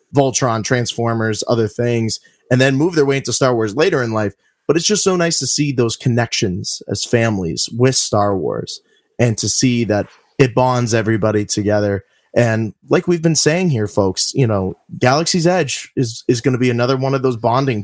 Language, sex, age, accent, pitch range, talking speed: English, male, 20-39, American, 110-140 Hz, 195 wpm